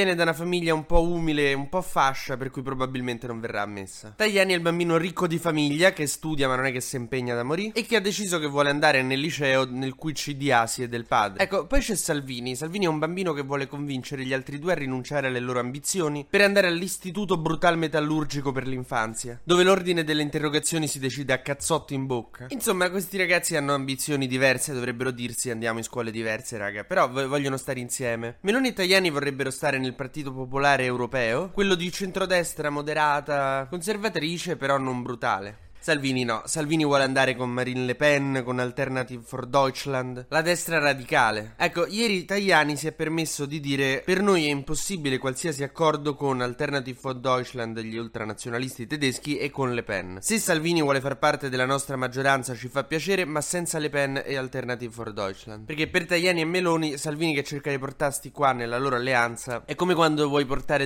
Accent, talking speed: native, 195 wpm